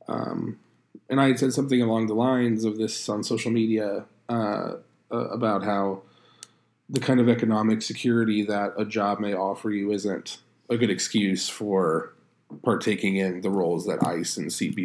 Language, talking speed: English, 170 wpm